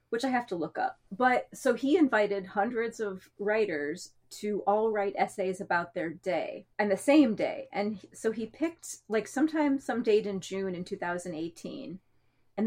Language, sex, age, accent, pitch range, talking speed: English, female, 30-49, American, 190-265 Hz, 175 wpm